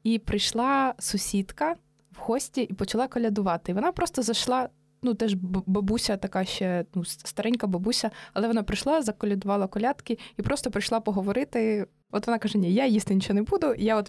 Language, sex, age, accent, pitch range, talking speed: Ukrainian, female, 20-39, native, 180-215 Hz, 170 wpm